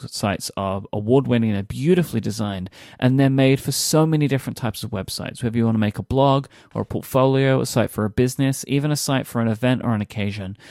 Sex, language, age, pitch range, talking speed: male, English, 30-49, 105-130 Hz, 225 wpm